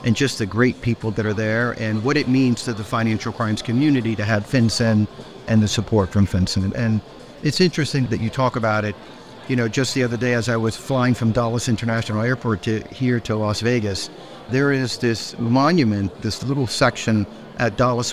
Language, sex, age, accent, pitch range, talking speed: English, male, 50-69, American, 110-130 Hz, 200 wpm